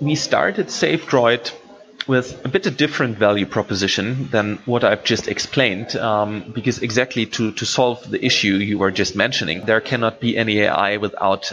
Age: 30-49